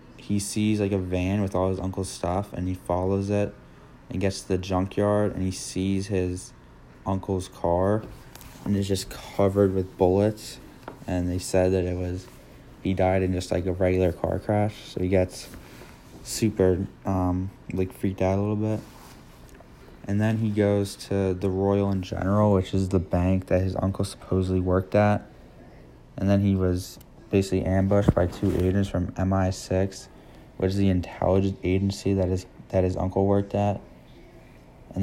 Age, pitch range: 20-39, 90-100 Hz